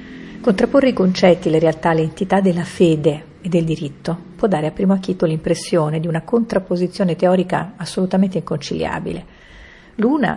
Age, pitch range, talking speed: 50-69, 165-195 Hz, 145 wpm